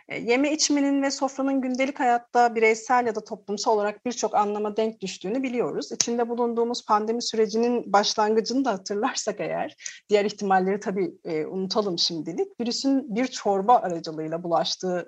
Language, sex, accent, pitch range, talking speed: Turkish, female, native, 190-240 Hz, 135 wpm